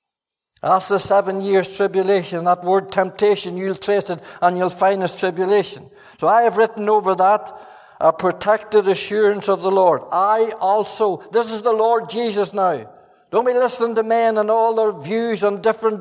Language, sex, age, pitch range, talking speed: English, male, 60-79, 205-230 Hz, 175 wpm